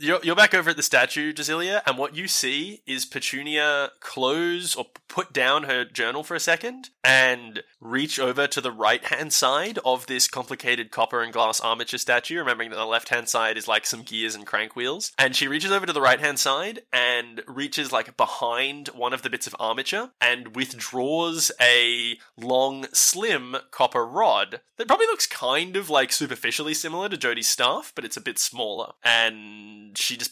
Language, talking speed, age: English, 185 wpm, 20-39